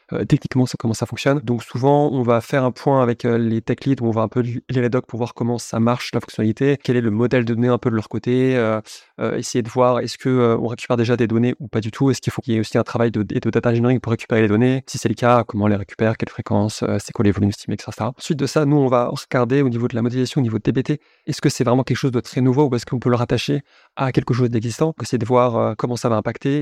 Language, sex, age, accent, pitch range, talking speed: French, male, 20-39, French, 115-130 Hz, 310 wpm